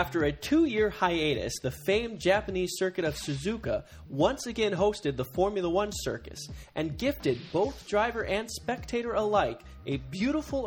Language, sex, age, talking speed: English, male, 20-39, 145 wpm